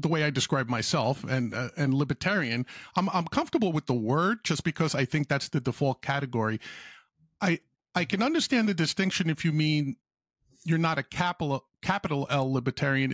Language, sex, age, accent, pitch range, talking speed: English, male, 50-69, American, 130-175 Hz, 180 wpm